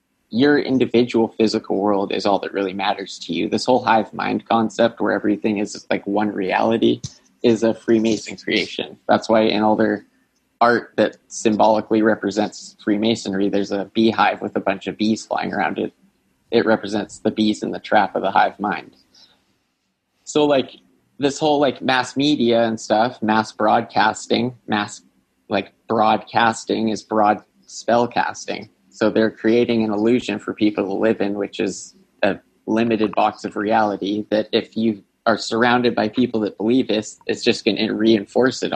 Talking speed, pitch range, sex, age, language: 165 wpm, 105-115 Hz, male, 20-39, English